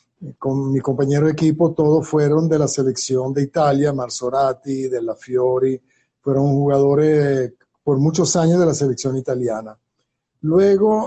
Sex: male